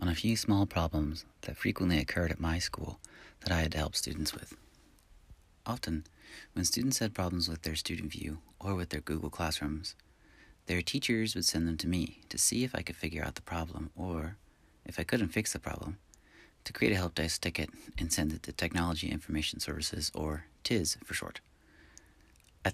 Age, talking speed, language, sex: 30-49, 195 wpm, English, male